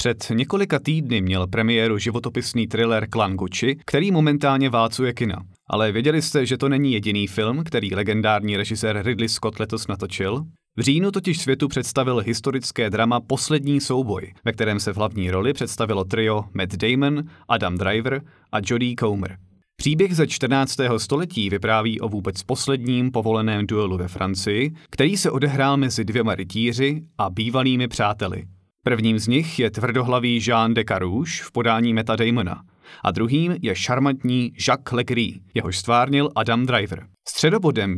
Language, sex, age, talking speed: Czech, male, 30-49, 150 wpm